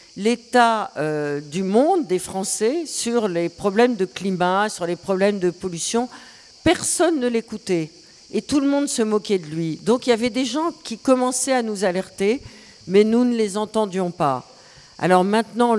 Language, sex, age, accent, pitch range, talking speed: French, female, 50-69, French, 180-235 Hz, 175 wpm